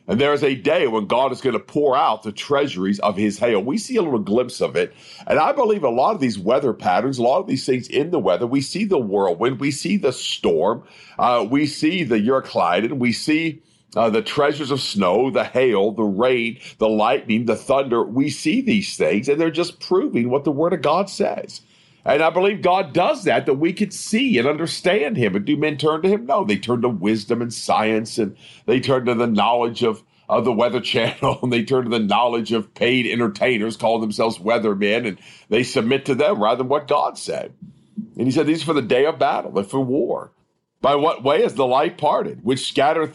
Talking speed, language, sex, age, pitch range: 230 wpm, English, male, 50-69, 115-165 Hz